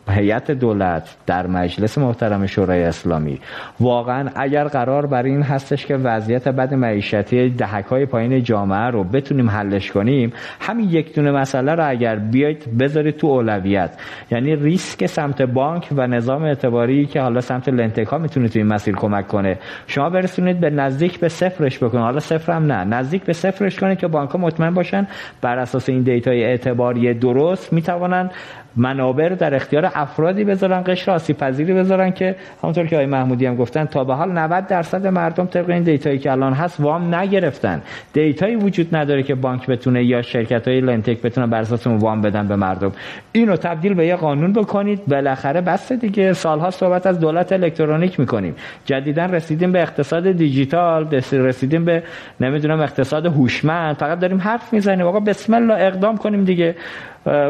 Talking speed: 160 wpm